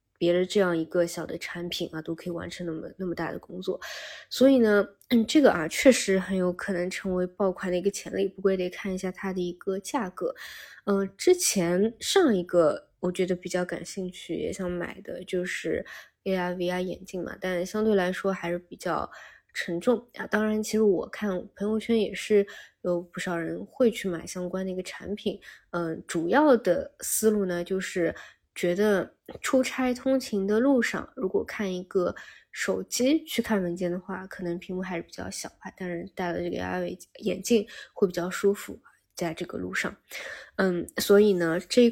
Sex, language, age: female, Chinese, 20-39